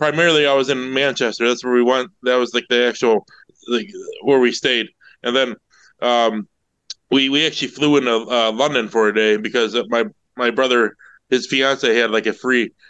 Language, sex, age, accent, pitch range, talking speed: English, male, 20-39, American, 120-135 Hz, 190 wpm